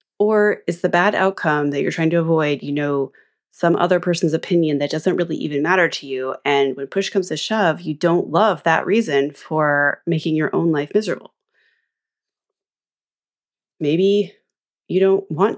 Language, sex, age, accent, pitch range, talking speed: English, female, 30-49, American, 145-185 Hz, 170 wpm